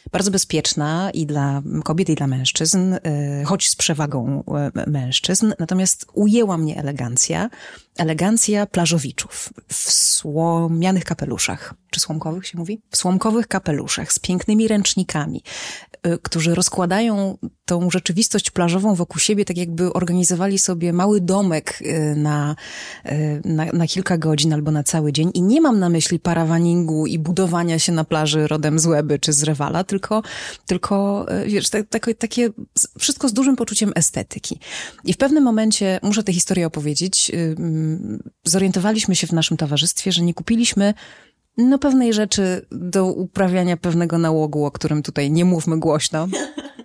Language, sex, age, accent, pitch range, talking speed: Polish, female, 30-49, native, 155-195 Hz, 140 wpm